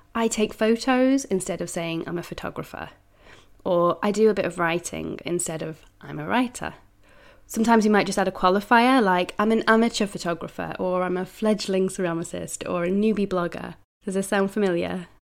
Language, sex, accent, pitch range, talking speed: English, female, British, 180-220 Hz, 180 wpm